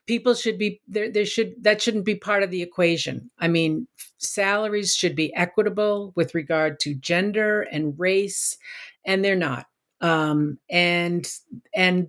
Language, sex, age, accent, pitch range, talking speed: English, female, 50-69, American, 170-215 Hz, 155 wpm